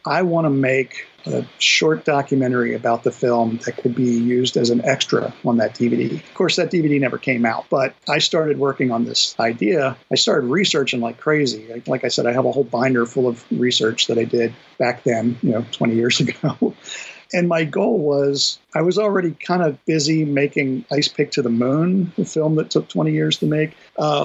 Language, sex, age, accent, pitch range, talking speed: English, male, 50-69, American, 125-150 Hz, 210 wpm